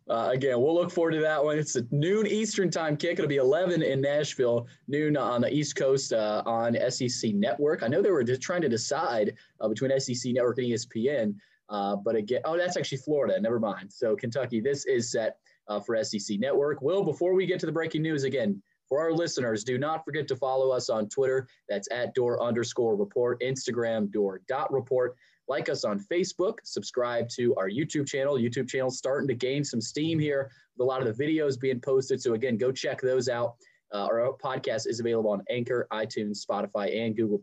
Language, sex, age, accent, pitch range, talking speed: English, male, 20-39, American, 120-160 Hz, 210 wpm